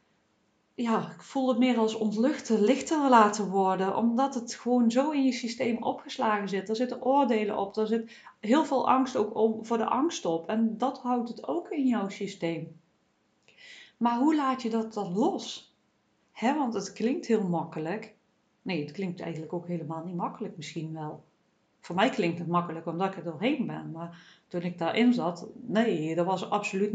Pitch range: 195-250 Hz